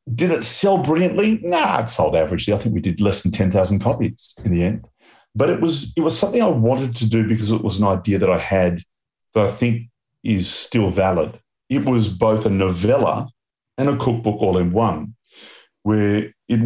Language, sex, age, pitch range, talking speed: English, male, 30-49, 95-115 Hz, 200 wpm